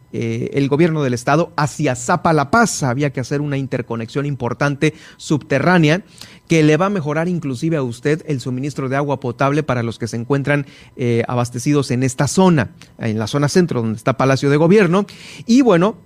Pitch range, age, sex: 130-165 Hz, 40-59, male